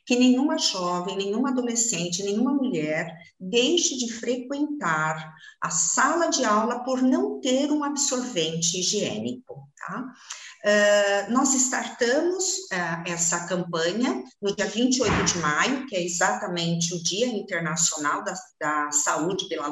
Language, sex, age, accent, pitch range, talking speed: Portuguese, female, 50-69, Brazilian, 180-265 Hz, 120 wpm